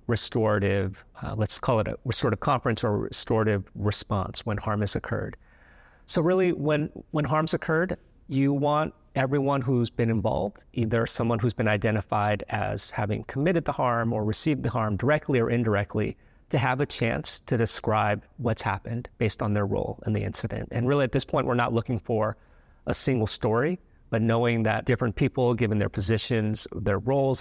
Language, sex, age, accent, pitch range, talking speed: English, male, 30-49, American, 105-125 Hz, 180 wpm